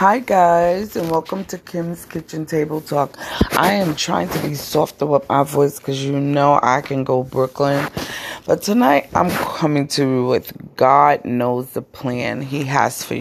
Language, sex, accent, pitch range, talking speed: English, female, American, 130-155 Hz, 175 wpm